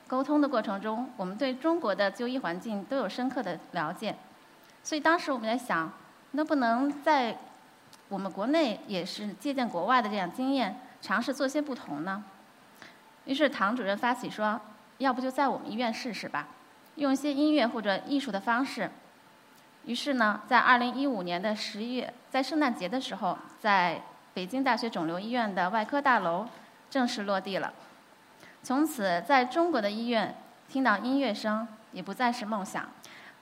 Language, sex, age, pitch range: Chinese, female, 20-39, 210-280 Hz